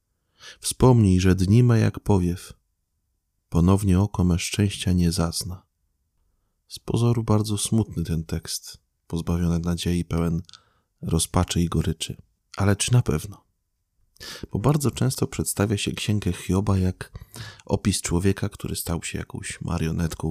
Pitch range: 85-105 Hz